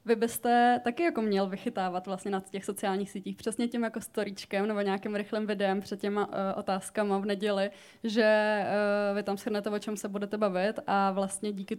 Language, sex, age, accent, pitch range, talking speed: Czech, female, 20-39, native, 195-215 Hz, 195 wpm